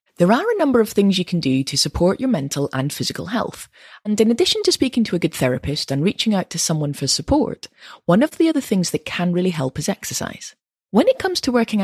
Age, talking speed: 30-49, 245 wpm